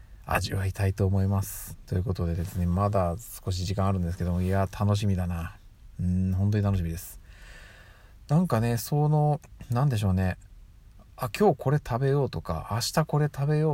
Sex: male